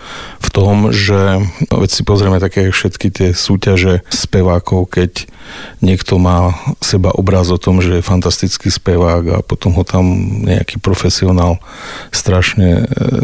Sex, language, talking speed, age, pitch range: male, Slovak, 130 wpm, 40-59, 90-110 Hz